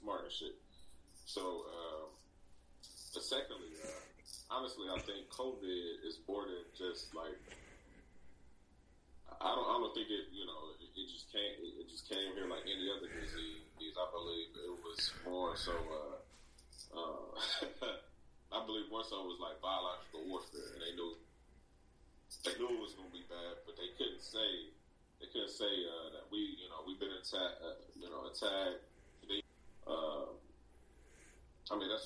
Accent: American